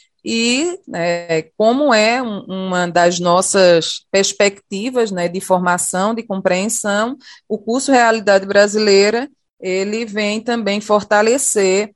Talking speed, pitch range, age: 105 wpm, 180-230 Hz, 20-39